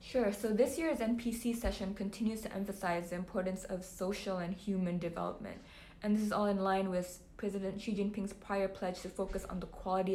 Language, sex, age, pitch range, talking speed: English, female, 20-39, 185-215 Hz, 195 wpm